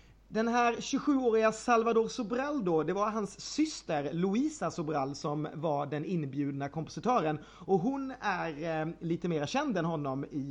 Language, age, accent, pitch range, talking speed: Swedish, 30-49, native, 160-215 Hz, 155 wpm